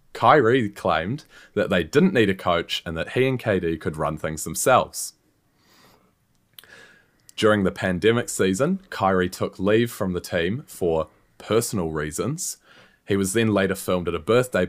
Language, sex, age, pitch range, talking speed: English, male, 20-39, 85-105 Hz, 155 wpm